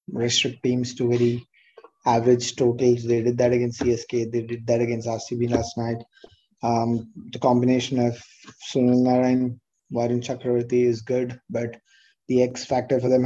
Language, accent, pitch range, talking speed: English, Indian, 120-140 Hz, 160 wpm